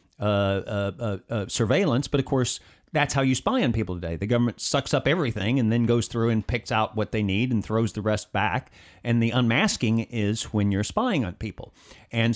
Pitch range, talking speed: 105-145 Hz, 220 wpm